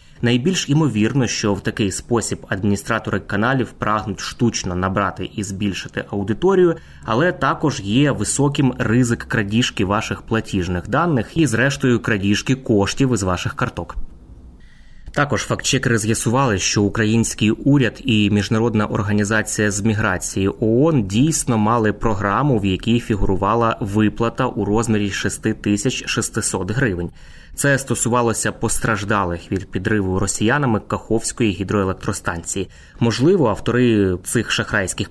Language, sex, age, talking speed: Ukrainian, male, 20-39, 110 wpm